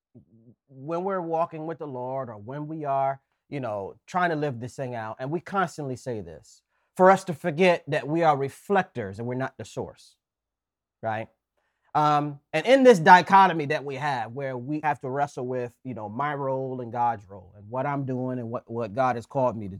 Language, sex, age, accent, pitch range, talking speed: English, male, 30-49, American, 130-175 Hz, 210 wpm